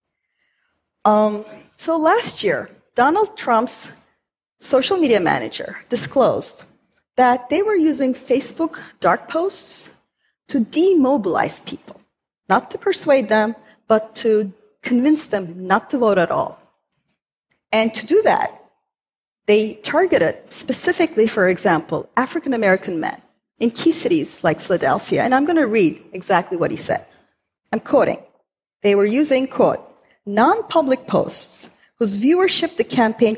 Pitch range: 215-325 Hz